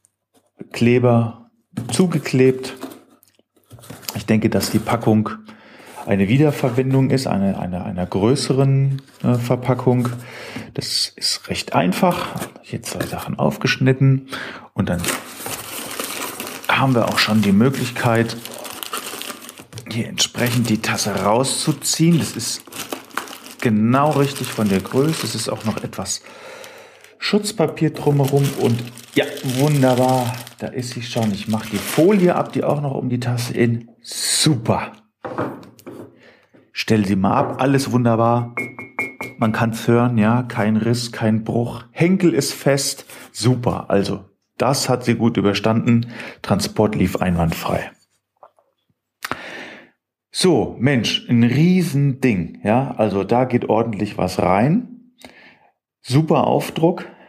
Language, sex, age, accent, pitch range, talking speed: German, male, 40-59, German, 110-135 Hz, 115 wpm